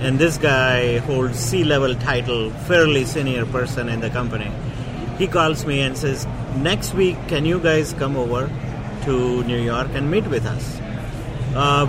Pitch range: 125-150 Hz